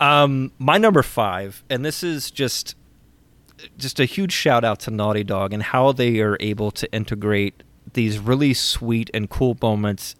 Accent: American